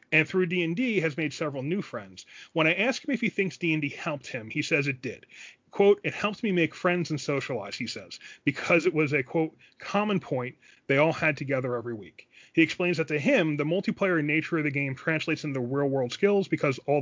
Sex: male